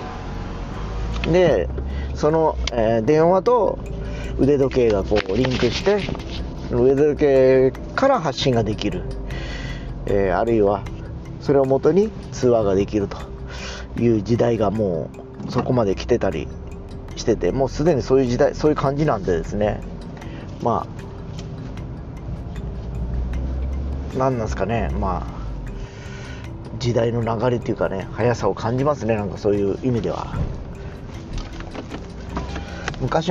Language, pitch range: Japanese, 90-130 Hz